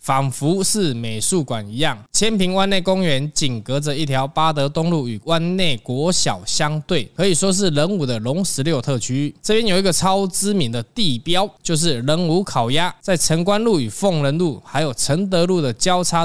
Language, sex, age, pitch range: Chinese, male, 20-39, 135-180 Hz